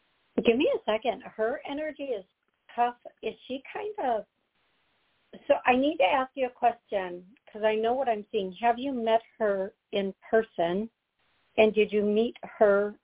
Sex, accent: female, American